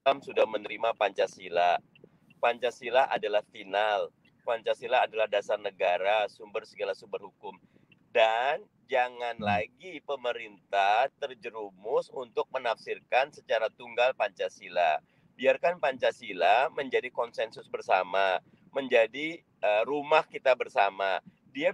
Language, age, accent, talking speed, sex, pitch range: Indonesian, 40-59, native, 95 wpm, male, 135-220 Hz